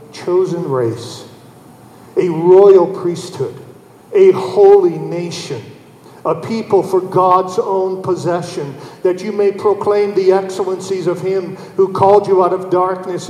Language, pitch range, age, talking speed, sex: English, 180-215 Hz, 50-69, 125 wpm, male